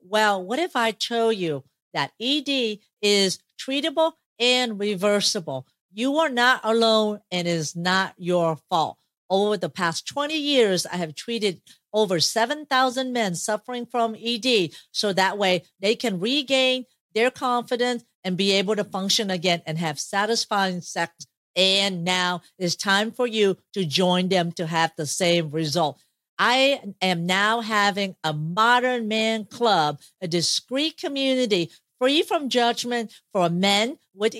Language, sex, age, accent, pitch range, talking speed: English, female, 50-69, American, 185-250 Hz, 150 wpm